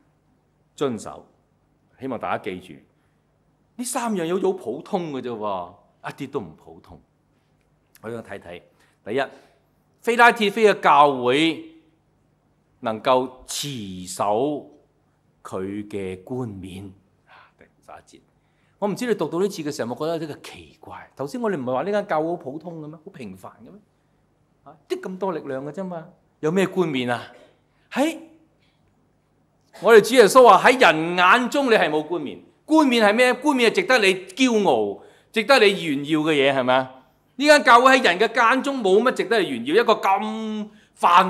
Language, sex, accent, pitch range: Chinese, male, native, 145-220 Hz